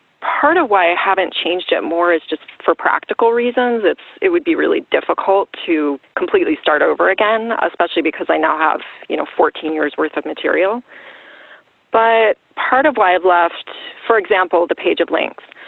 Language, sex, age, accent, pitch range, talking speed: English, female, 30-49, American, 165-225 Hz, 185 wpm